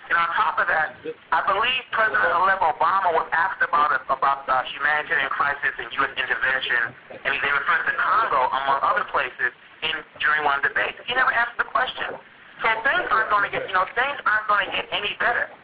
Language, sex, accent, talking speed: English, male, American, 210 wpm